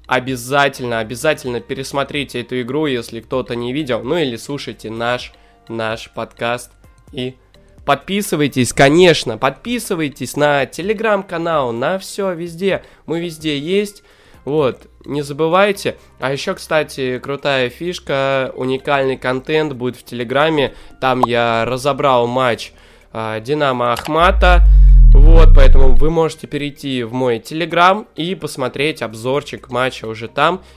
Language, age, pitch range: Russian, 20-39, 120-150 Hz